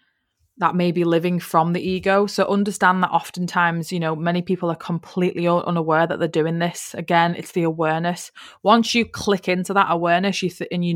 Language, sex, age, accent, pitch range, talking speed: English, female, 20-39, British, 165-195 Hz, 190 wpm